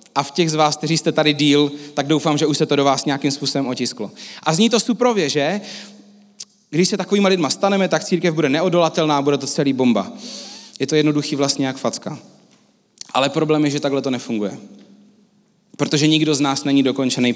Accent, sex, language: native, male, Czech